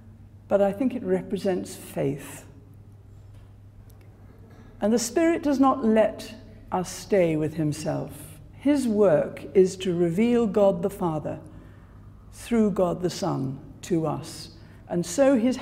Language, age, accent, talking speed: English, 60-79, British, 125 wpm